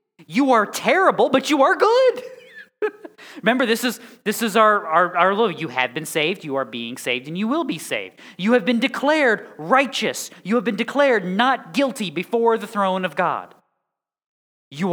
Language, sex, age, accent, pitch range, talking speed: English, male, 30-49, American, 130-220 Hz, 185 wpm